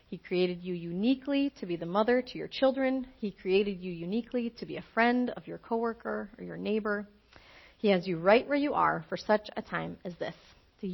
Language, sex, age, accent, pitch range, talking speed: English, female, 40-59, American, 180-245 Hz, 215 wpm